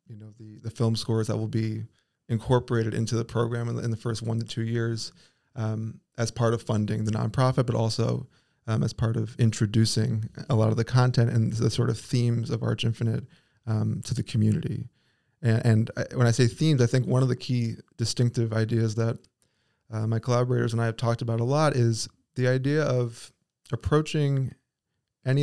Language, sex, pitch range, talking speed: English, male, 115-125 Hz, 195 wpm